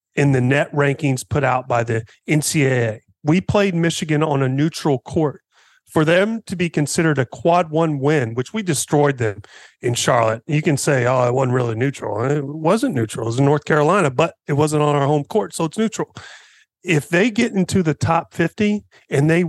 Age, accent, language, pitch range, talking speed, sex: 40-59, American, English, 140-180 Hz, 205 wpm, male